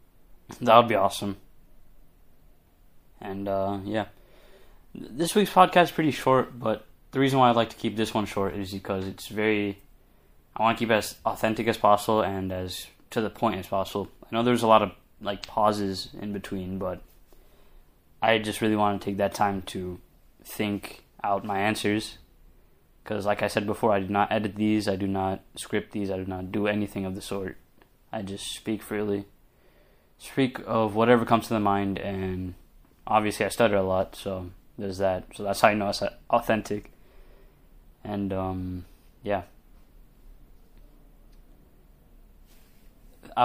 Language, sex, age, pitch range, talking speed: English, male, 20-39, 95-110 Hz, 165 wpm